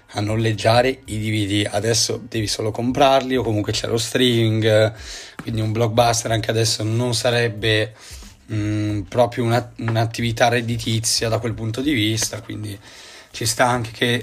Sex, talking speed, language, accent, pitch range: male, 150 wpm, Italian, native, 110-125 Hz